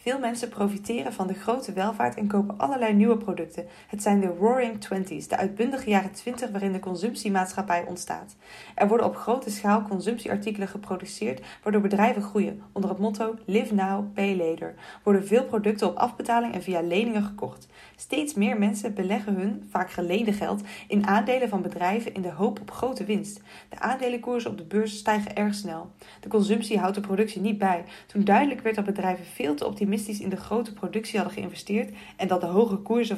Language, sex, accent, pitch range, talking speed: English, female, Dutch, 185-220 Hz, 185 wpm